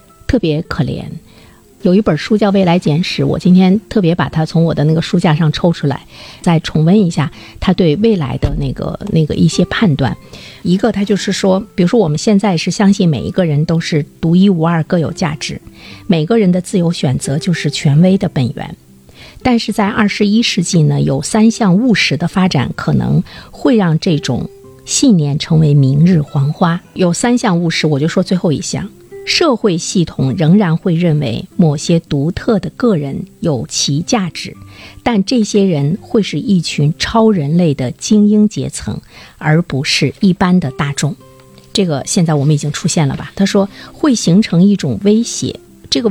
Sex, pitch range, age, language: female, 150-205 Hz, 50-69, Chinese